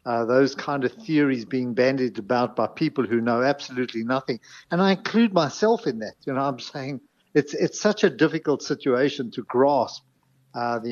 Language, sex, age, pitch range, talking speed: English, male, 60-79, 120-150 Hz, 185 wpm